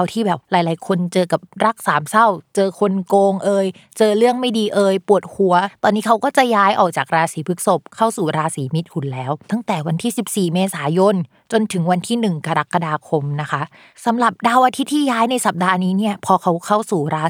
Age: 20-39